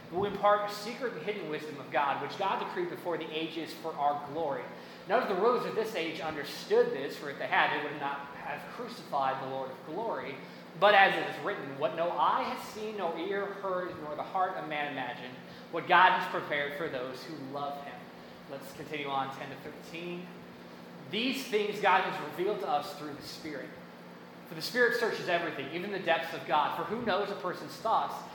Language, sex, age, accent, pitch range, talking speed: English, male, 20-39, American, 135-185 Hz, 210 wpm